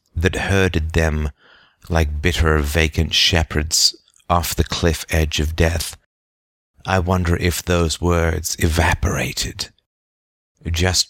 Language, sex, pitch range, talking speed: English, male, 80-90 Hz, 110 wpm